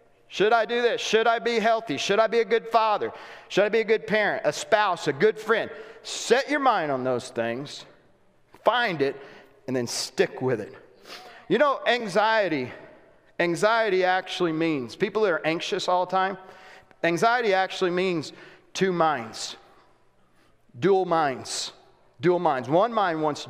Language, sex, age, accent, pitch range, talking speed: English, male, 40-59, American, 135-215 Hz, 165 wpm